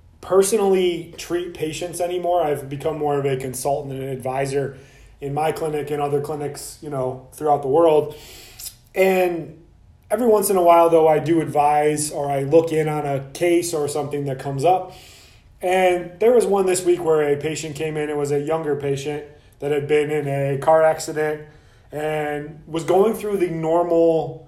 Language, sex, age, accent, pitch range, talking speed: English, male, 30-49, American, 145-170 Hz, 185 wpm